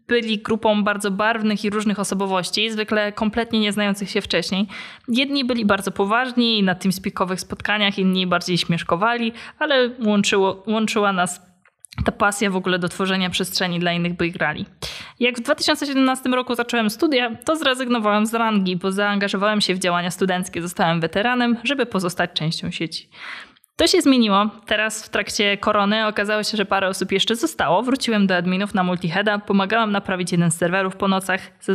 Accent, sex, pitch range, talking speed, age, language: native, female, 195-240 Hz, 170 wpm, 20-39, Polish